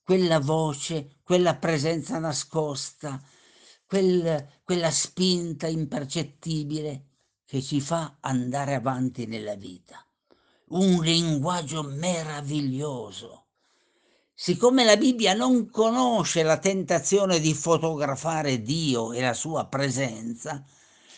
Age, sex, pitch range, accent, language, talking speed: 50-69, male, 140-195 Hz, native, Italian, 90 wpm